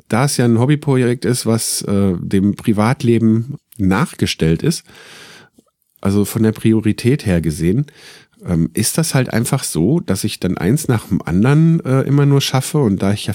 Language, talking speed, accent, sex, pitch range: German, 175 wpm, German, male, 95-130 Hz